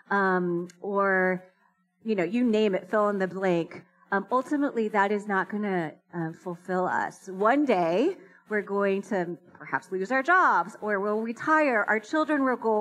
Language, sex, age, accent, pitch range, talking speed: English, female, 30-49, American, 185-245 Hz, 175 wpm